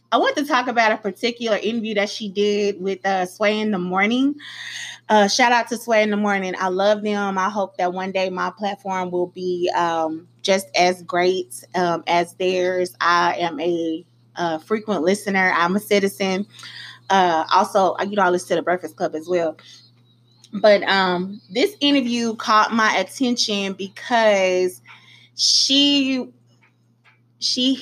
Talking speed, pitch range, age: 160 wpm, 180-230 Hz, 20-39